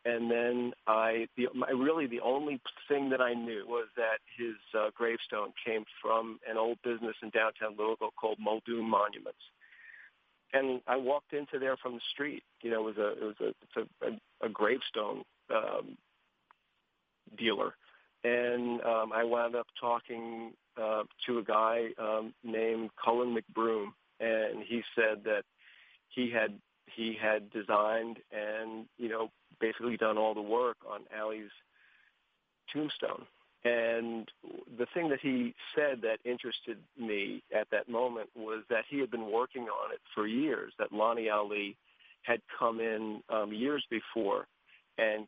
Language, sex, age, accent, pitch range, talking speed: English, male, 50-69, American, 110-120 Hz, 155 wpm